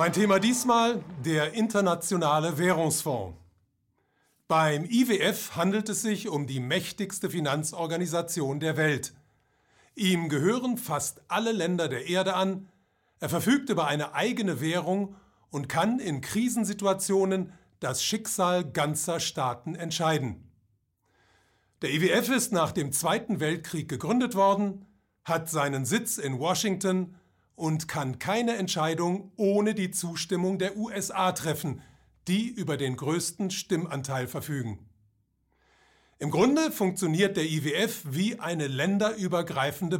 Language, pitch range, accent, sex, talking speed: German, 145-200 Hz, German, male, 115 wpm